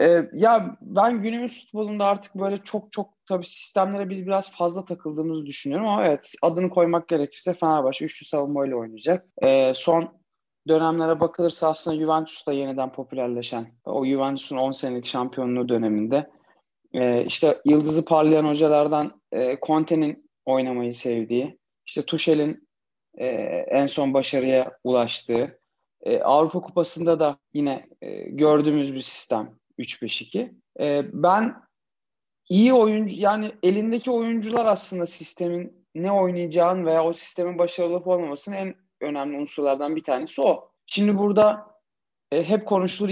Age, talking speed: 30-49, 130 wpm